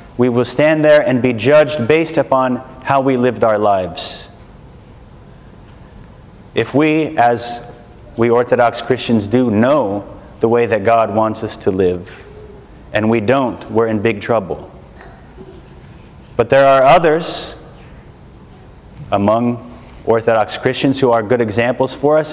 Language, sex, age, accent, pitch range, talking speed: English, male, 30-49, American, 115-150 Hz, 135 wpm